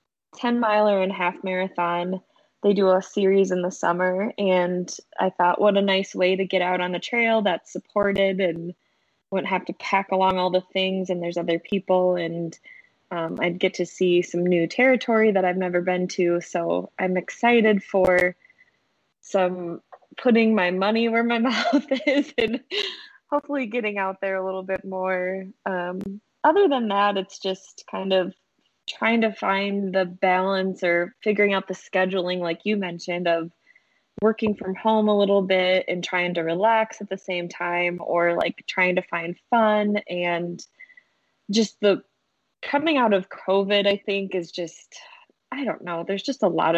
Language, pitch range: English, 180-210 Hz